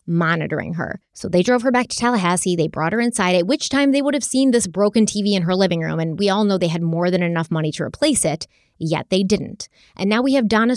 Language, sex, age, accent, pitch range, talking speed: English, female, 30-49, American, 170-235 Hz, 265 wpm